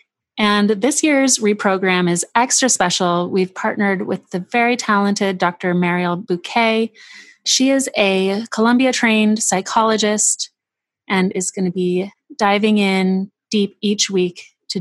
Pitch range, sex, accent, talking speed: 180-220 Hz, female, American, 130 wpm